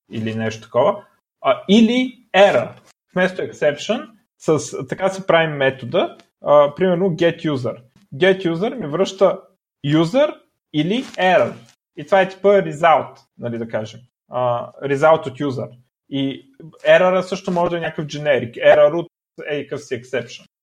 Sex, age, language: male, 30-49, Bulgarian